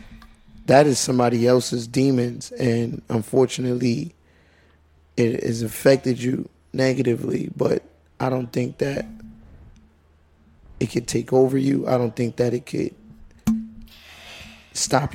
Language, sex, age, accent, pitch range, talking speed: English, male, 20-39, American, 80-125 Hz, 115 wpm